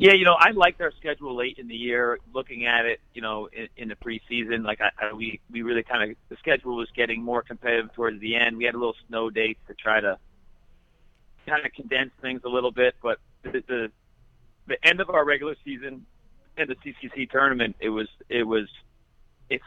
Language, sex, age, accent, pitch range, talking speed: English, male, 40-59, American, 105-120 Hz, 215 wpm